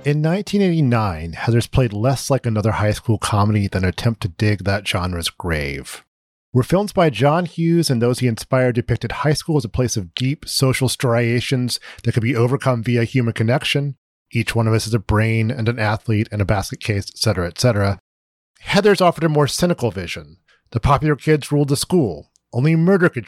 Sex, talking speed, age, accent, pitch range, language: male, 195 wpm, 40-59, American, 110-150 Hz, English